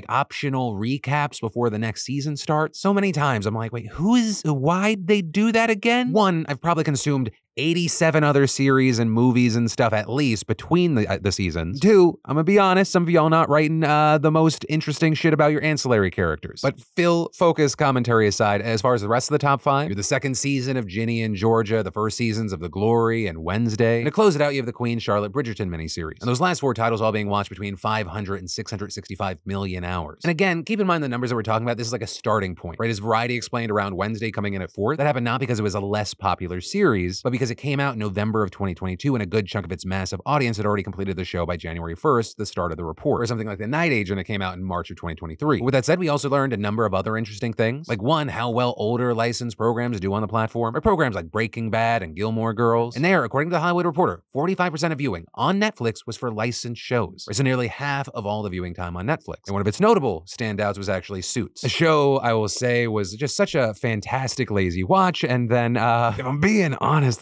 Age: 30-49